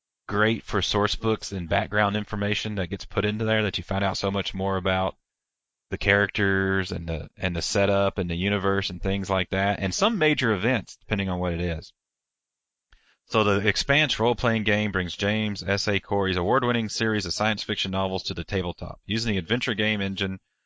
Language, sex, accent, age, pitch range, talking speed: English, male, American, 30-49, 95-105 Hz, 190 wpm